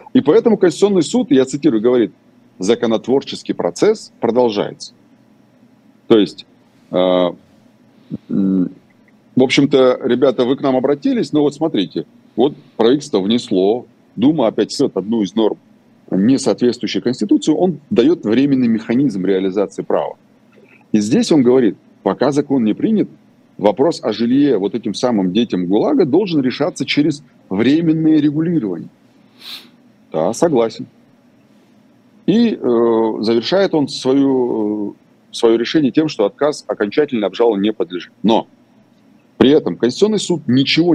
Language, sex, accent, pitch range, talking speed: Russian, male, native, 105-150 Hz, 125 wpm